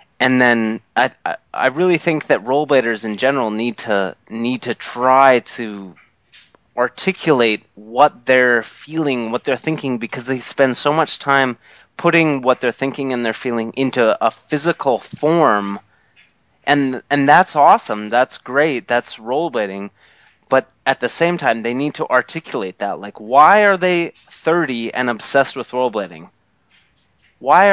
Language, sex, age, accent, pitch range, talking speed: English, male, 30-49, American, 120-155 Hz, 150 wpm